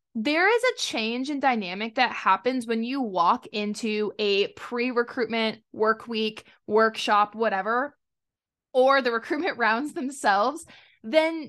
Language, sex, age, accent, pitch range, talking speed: English, female, 20-39, American, 210-275 Hz, 125 wpm